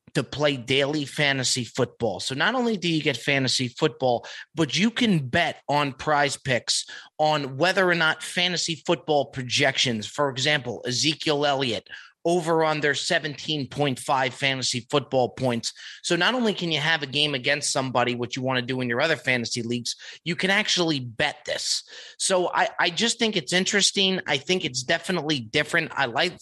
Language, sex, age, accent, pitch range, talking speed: English, male, 30-49, American, 135-165 Hz, 175 wpm